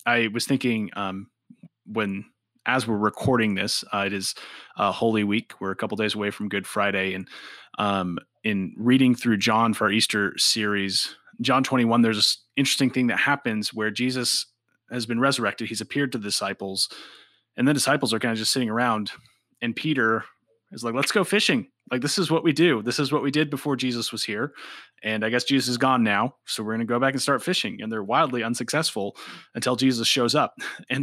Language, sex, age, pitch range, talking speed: English, male, 30-49, 105-130 Hz, 205 wpm